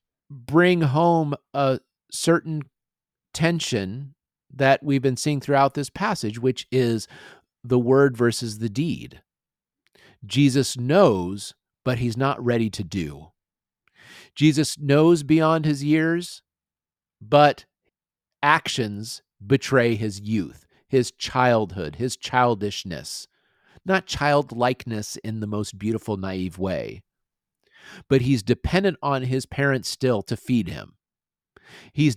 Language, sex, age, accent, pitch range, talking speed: English, male, 40-59, American, 110-150 Hz, 110 wpm